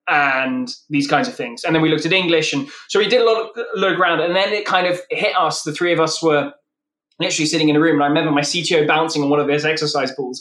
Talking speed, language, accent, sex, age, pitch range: 280 wpm, English, British, male, 20-39, 145-185 Hz